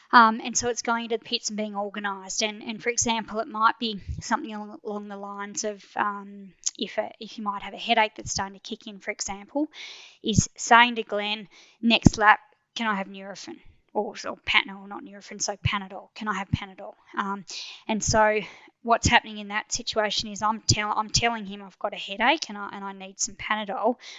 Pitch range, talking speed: 200-230 Hz, 210 wpm